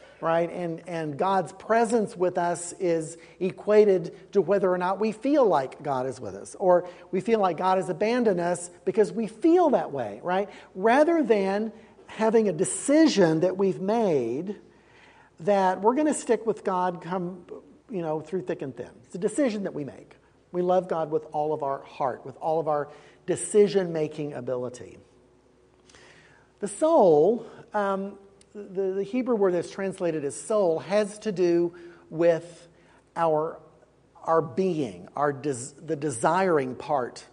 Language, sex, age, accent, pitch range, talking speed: English, male, 50-69, American, 160-205 Hz, 165 wpm